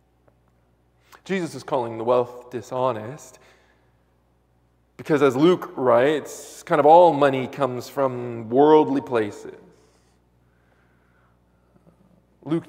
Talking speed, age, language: 90 wpm, 20-39, English